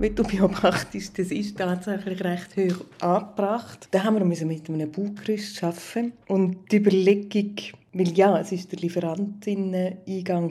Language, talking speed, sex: English, 130 wpm, female